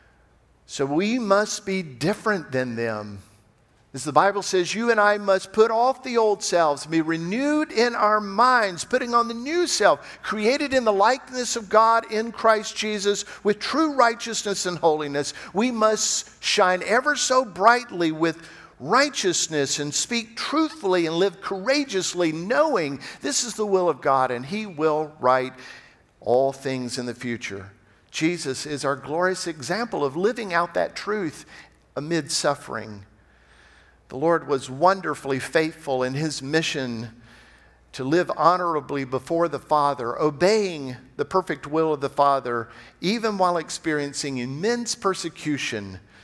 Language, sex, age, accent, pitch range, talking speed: English, male, 50-69, American, 135-210 Hz, 145 wpm